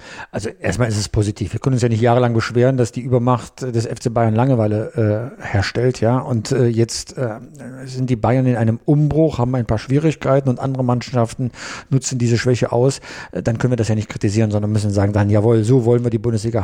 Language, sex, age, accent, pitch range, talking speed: German, male, 50-69, German, 115-130 Hz, 220 wpm